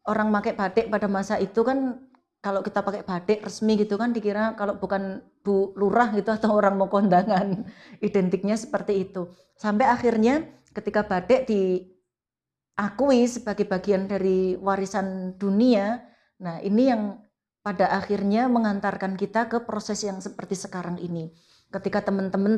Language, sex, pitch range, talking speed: Indonesian, female, 195-230 Hz, 140 wpm